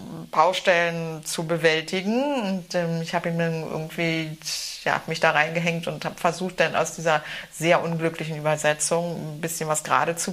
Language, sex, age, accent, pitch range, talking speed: German, female, 30-49, German, 160-200 Hz, 150 wpm